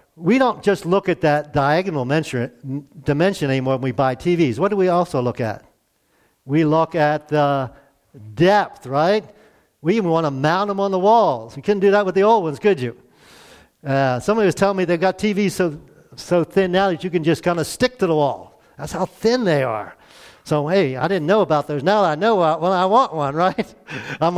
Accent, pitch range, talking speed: American, 140-195 Hz, 215 wpm